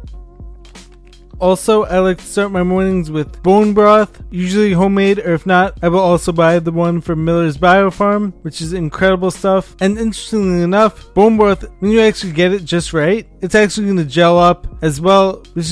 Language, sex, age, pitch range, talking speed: English, male, 20-39, 175-205 Hz, 185 wpm